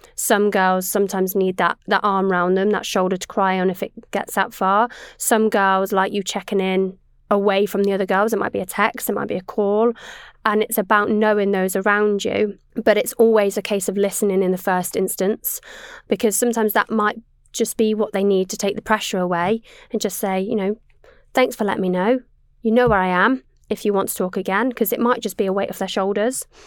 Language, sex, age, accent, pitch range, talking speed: English, female, 20-39, British, 195-225 Hz, 230 wpm